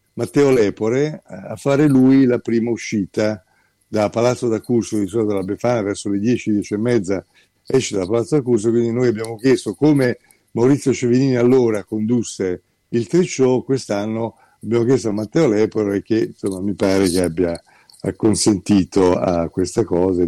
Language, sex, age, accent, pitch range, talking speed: Italian, male, 50-69, native, 95-115 Hz, 155 wpm